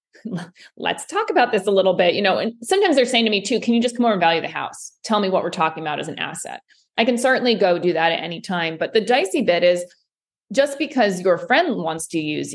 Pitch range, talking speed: 170-215 Hz, 265 wpm